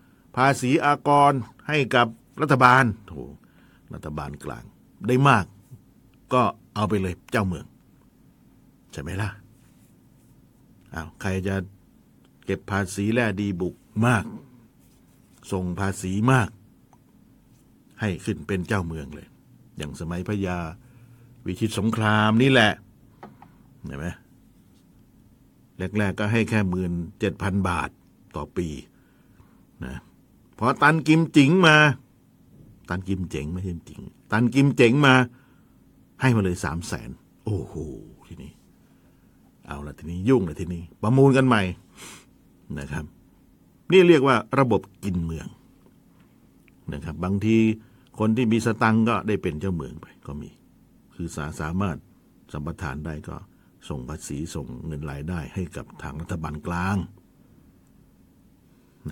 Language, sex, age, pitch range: Thai, male, 60-79, 90-125 Hz